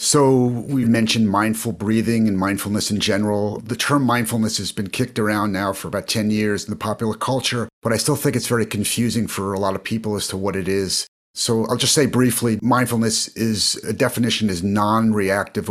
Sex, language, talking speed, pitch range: male, English, 200 wpm, 105-120 Hz